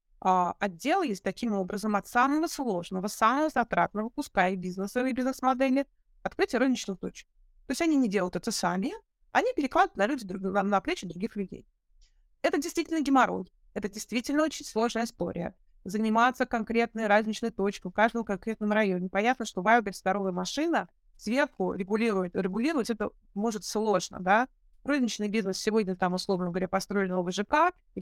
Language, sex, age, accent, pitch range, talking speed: Russian, female, 30-49, native, 190-250 Hz, 160 wpm